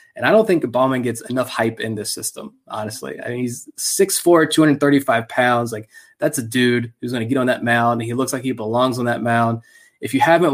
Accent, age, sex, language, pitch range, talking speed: American, 20-39, male, English, 115-145 Hz, 220 wpm